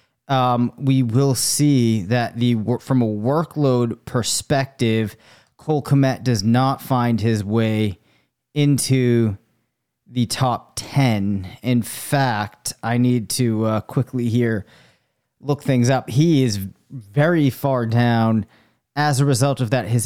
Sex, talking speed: male, 130 wpm